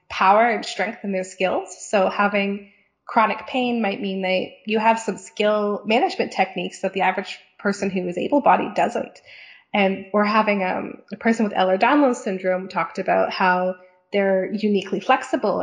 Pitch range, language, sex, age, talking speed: 185-220 Hz, English, female, 20-39, 160 wpm